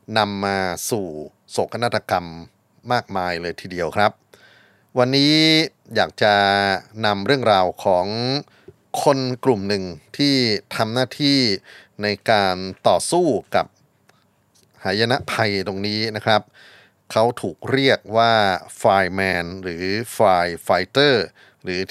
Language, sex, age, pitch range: Thai, male, 30-49, 95-115 Hz